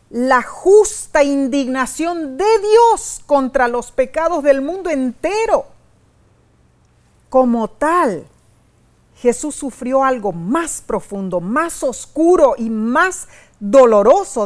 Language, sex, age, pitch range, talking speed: Spanish, female, 40-59, 225-315 Hz, 95 wpm